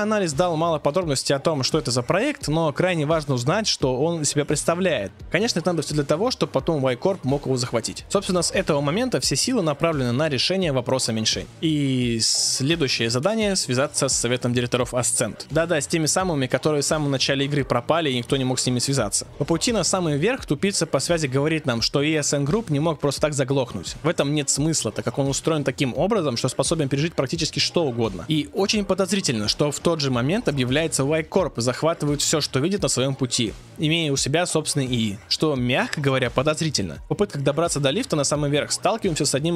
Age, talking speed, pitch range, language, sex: 20-39, 210 wpm, 130-160 Hz, Russian, male